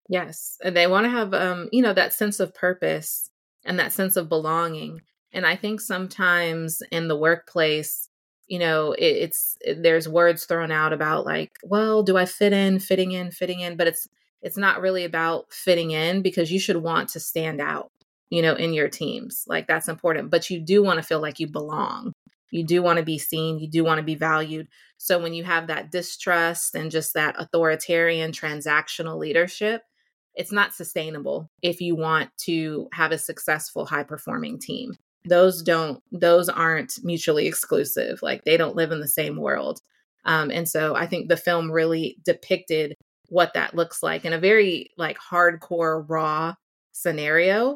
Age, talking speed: 20-39, 185 wpm